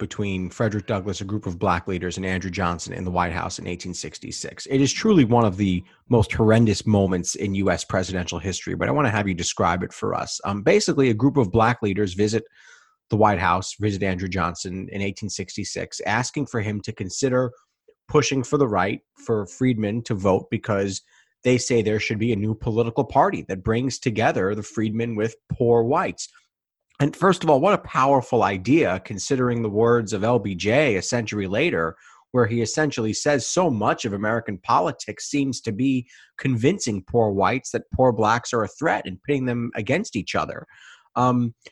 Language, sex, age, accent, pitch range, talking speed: English, male, 30-49, American, 100-125 Hz, 190 wpm